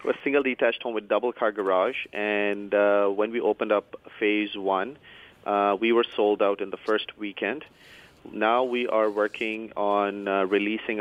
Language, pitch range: English, 95-110 Hz